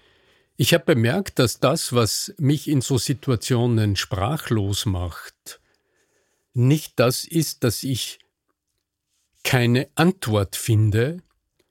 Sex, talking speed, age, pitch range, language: male, 100 wpm, 50-69, 115-145 Hz, German